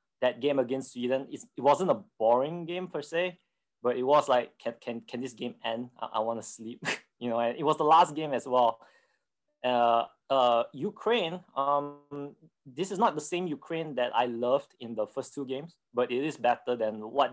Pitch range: 120-145 Hz